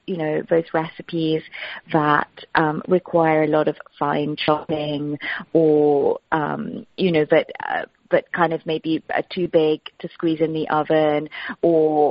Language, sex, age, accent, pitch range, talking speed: English, female, 30-49, British, 155-175 Hz, 150 wpm